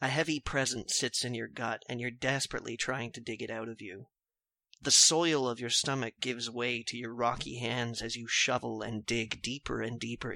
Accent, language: American, English